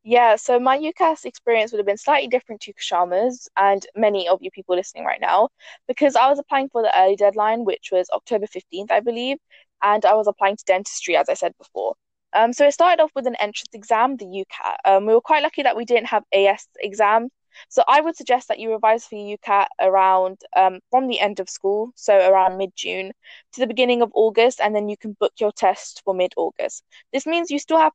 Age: 10-29